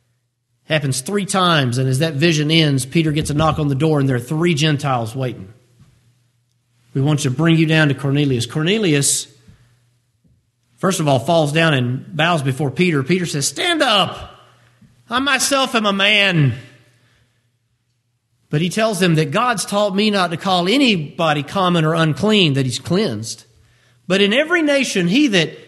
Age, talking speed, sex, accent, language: 40-59, 170 wpm, male, American, English